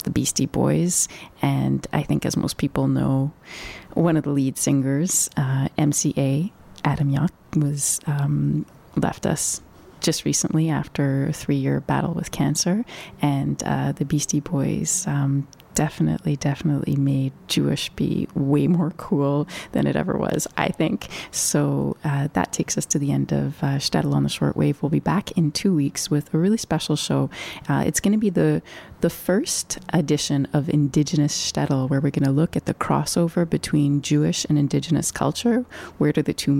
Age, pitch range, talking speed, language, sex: 30-49, 140-160 Hz, 175 wpm, English, female